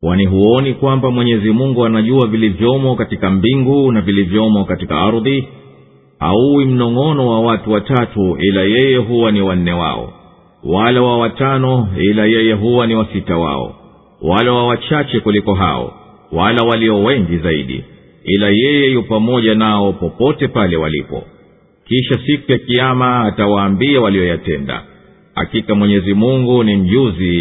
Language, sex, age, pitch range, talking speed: English, male, 50-69, 100-130 Hz, 130 wpm